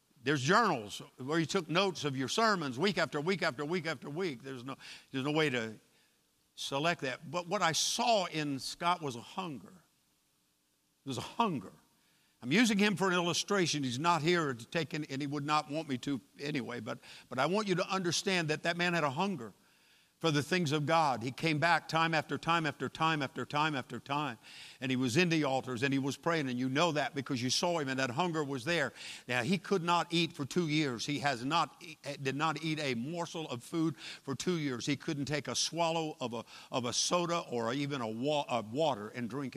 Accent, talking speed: American, 225 wpm